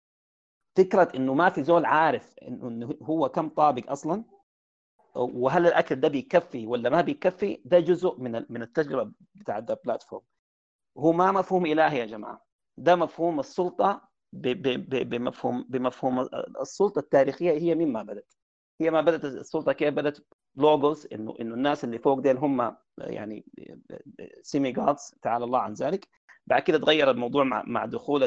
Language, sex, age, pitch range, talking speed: Arabic, male, 40-59, 125-165 Hz, 145 wpm